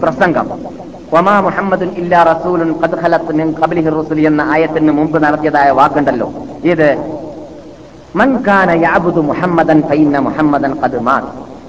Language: Malayalam